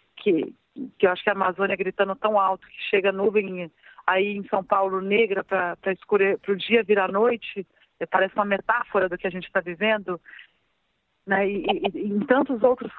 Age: 40-59